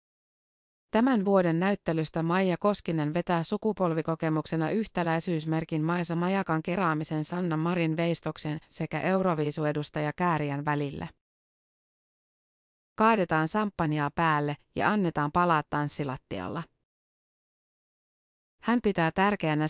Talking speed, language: 90 wpm, Finnish